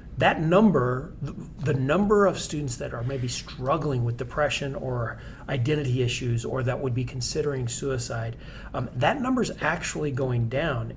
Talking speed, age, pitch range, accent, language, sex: 150 wpm, 40-59, 125-155 Hz, American, English, male